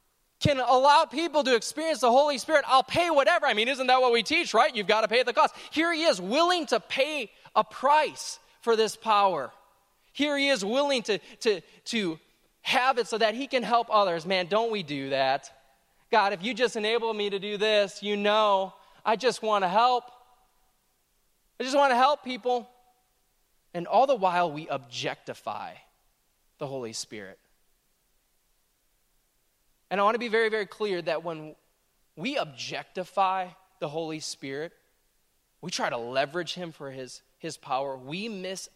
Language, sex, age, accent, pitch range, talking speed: English, male, 20-39, American, 155-245 Hz, 175 wpm